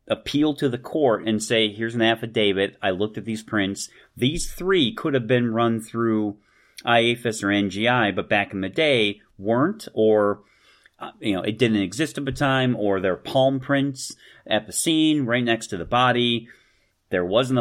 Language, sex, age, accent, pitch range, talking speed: English, male, 40-59, American, 95-120 Hz, 180 wpm